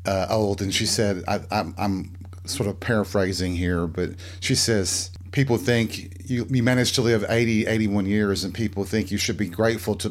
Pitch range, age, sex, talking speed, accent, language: 90-115 Hz, 40-59, male, 195 wpm, American, English